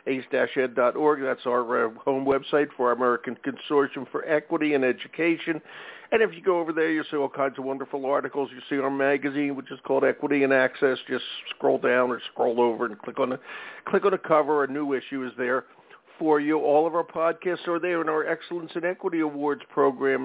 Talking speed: 205 wpm